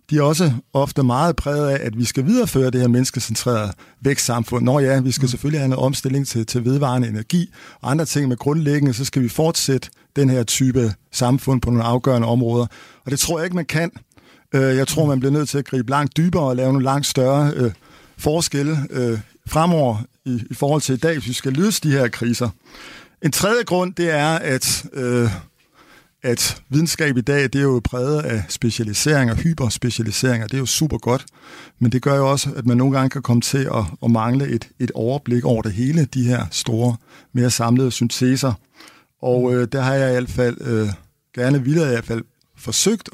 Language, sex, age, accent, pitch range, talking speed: Danish, male, 50-69, native, 120-140 Hz, 200 wpm